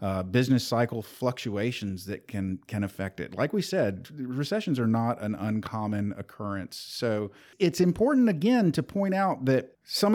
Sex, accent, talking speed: male, American, 160 wpm